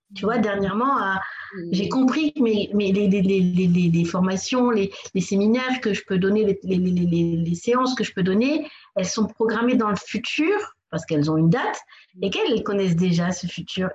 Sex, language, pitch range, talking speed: female, French, 180-245 Hz, 200 wpm